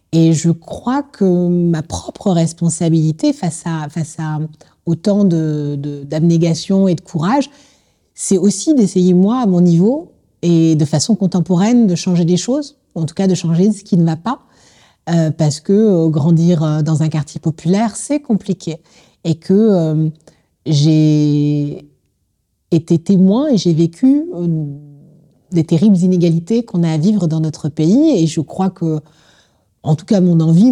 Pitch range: 155-195 Hz